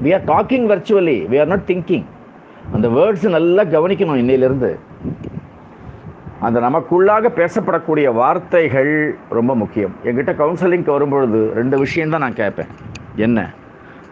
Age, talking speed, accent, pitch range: 50-69, 115 wpm, native, 120-175 Hz